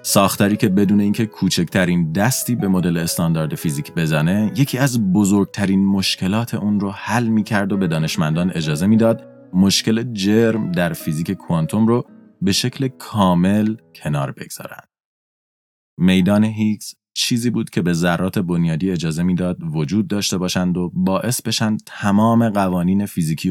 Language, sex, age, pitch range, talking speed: Persian, male, 30-49, 85-110 Hz, 140 wpm